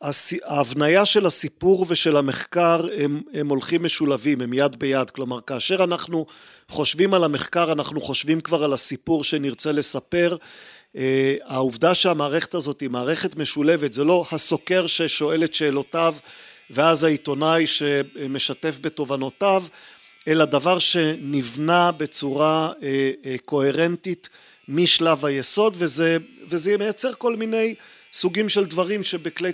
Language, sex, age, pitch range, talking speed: Hebrew, male, 40-59, 145-175 Hz, 115 wpm